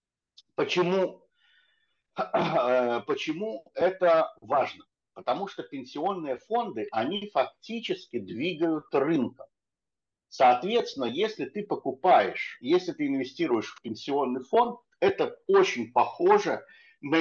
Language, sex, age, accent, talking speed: Russian, male, 50-69, native, 90 wpm